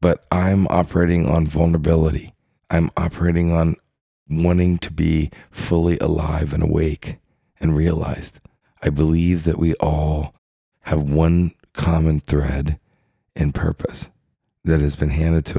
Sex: male